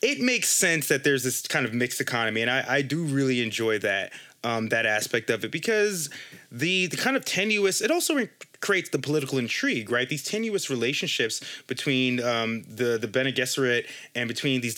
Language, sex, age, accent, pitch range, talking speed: English, male, 20-39, American, 120-150 Hz, 190 wpm